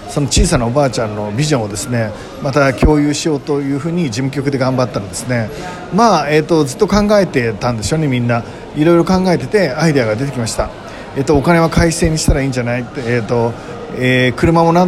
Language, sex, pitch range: Japanese, male, 120-165 Hz